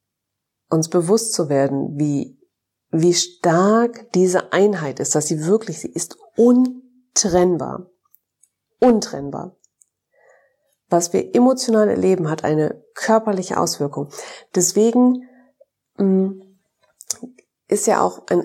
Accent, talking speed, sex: German, 100 wpm, female